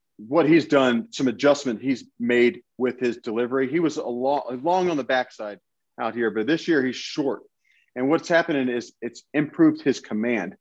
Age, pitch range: 40-59, 115-140 Hz